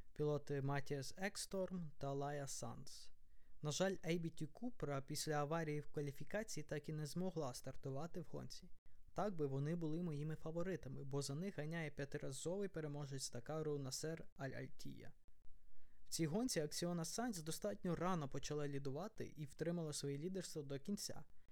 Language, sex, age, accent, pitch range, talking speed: Ukrainian, male, 20-39, native, 140-170 Hz, 140 wpm